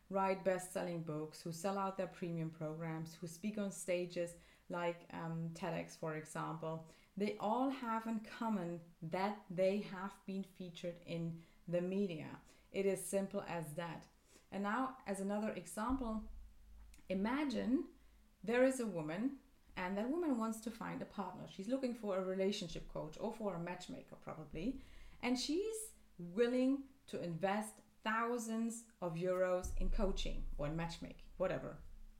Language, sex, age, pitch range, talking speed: English, female, 30-49, 170-225 Hz, 145 wpm